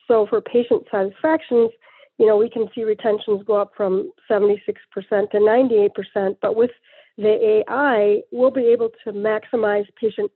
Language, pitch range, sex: English, 210-245 Hz, female